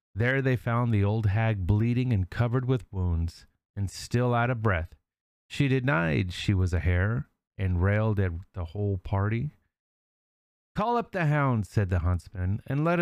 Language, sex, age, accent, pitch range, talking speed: English, male, 40-59, American, 95-130 Hz, 170 wpm